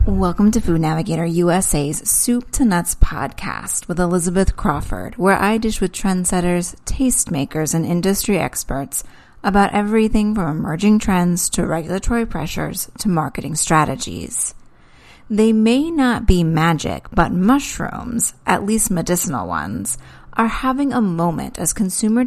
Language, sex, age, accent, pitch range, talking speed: English, female, 30-49, American, 165-220 Hz, 130 wpm